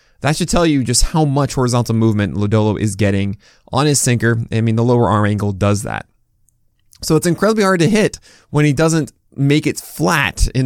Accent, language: American, English